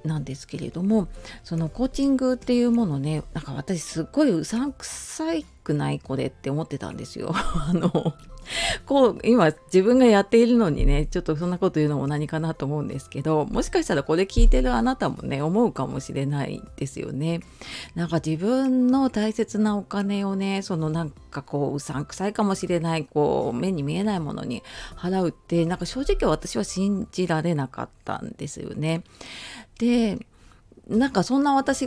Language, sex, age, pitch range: Japanese, female, 40-59, 150-220 Hz